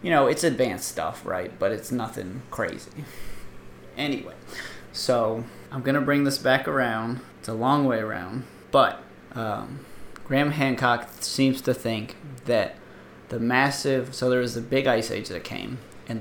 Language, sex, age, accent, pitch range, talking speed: English, male, 30-49, American, 115-135 Hz, 160 wpm